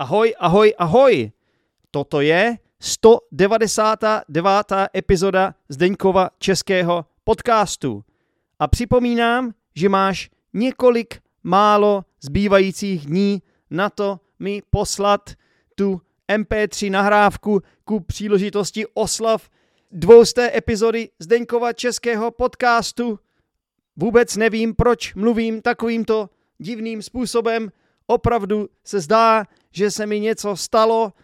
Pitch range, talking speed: 185-230 Hz, 90 wpm